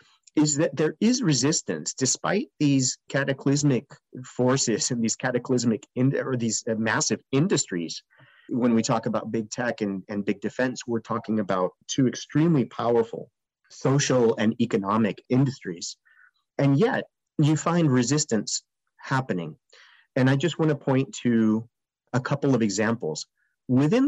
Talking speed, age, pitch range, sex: 135 wpm, 30-49, 115-140 Hz, male